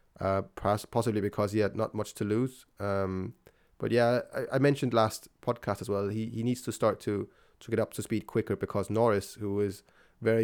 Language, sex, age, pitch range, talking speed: English, male, 20-39, 100-120 Hz, 215 wpm